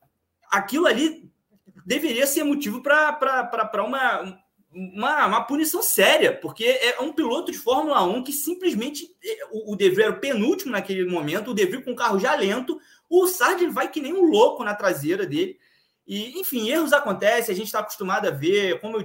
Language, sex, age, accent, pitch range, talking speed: Portuguese, male, 20-39, Brazilian, 185-295 Hz, 175 wpm